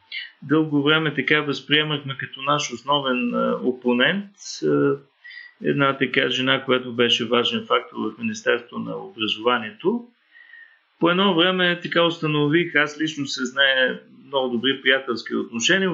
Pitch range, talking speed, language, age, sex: 130-180 Hz, 120 wpm, Bulgarian, 40-59, male